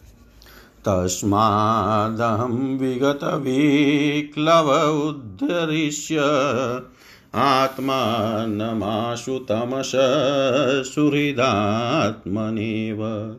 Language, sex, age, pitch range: Hindi, male, 50-69, 110-145 Hz